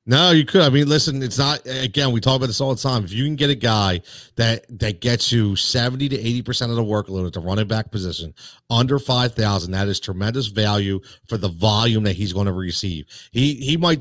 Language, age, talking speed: English, 40-59, 230 wpm